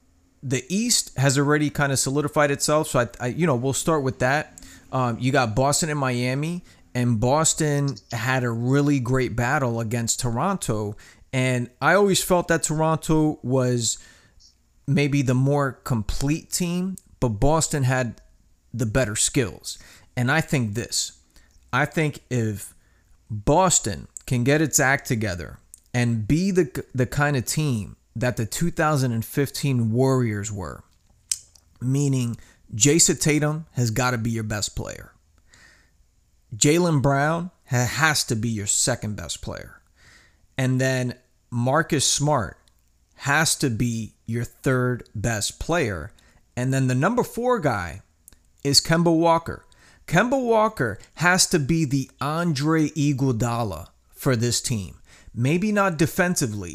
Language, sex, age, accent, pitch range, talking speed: English, male, 30-49, American, 115-150 Hz, 135 wpm